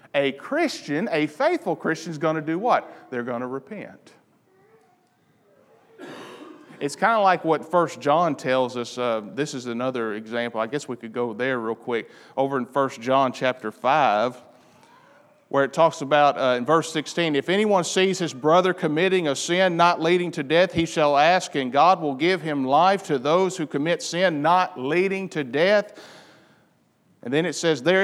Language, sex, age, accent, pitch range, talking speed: English, male, 40-59, American, 150-210 Hz, 180 wpm